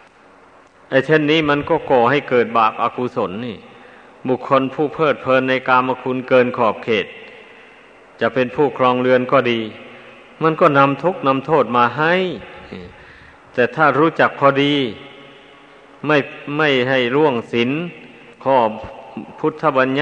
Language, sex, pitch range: Thai, male, 125-160 Hz